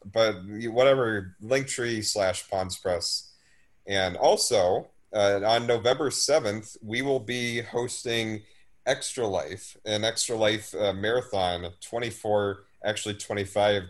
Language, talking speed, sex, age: English, 115 wpm, male, 30-49